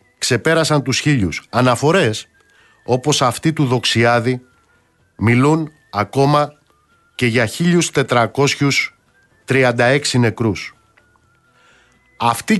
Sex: male